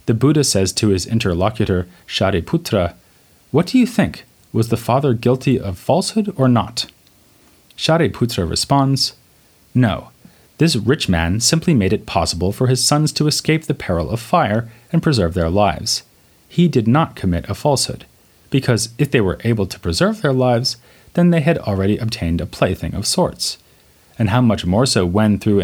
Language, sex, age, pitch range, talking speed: English, male, 30-49, 95-130 Hz, 170 wpm